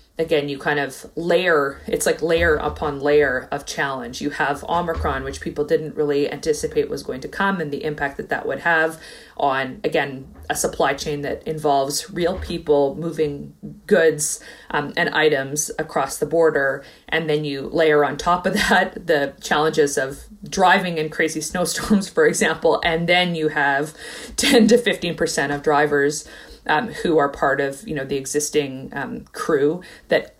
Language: English